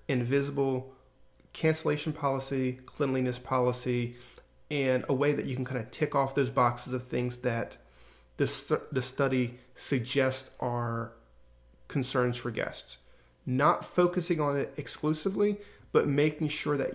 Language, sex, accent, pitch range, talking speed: English, male, American, 125-145 Hz, 135 wpm